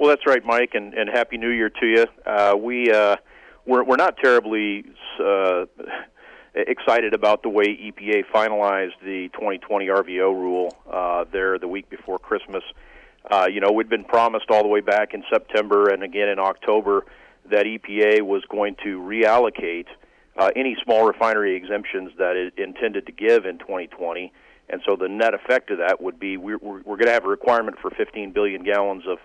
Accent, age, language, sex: American, 40-59, English, male